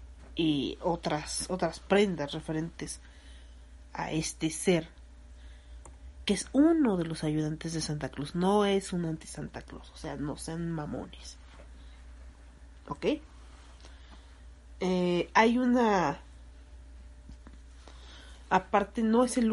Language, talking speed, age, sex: Spanish, 110 wpm, 40-59, female